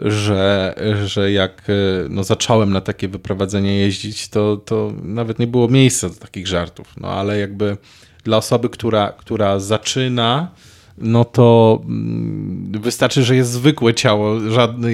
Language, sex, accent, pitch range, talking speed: Polish, male, native, 95-115 Hz, 135 wpm